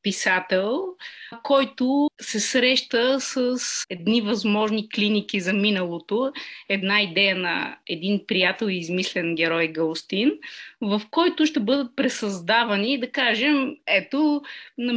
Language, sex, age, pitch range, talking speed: Bulgarian, female, 30-49, 205-275 Hz, 110 wpm